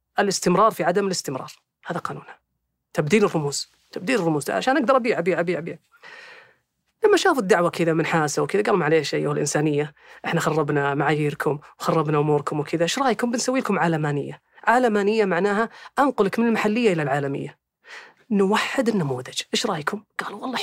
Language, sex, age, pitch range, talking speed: Arabic, female, 30-49, 170-255 Hz, 150 wpm